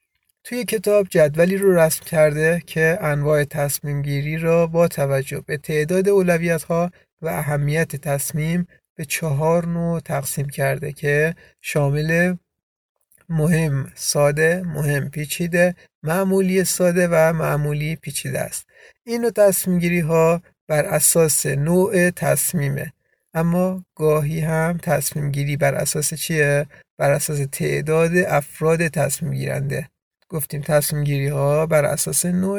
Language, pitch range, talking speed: Persian, 145-170 Hz, 120 wpm